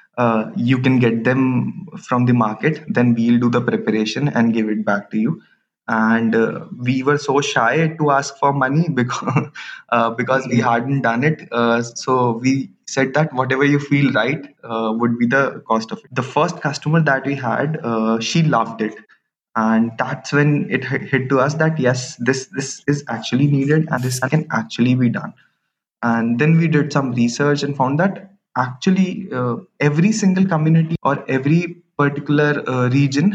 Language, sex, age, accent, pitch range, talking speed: English, male, 20-39, Indian, 120-155 Hz, 185 wpm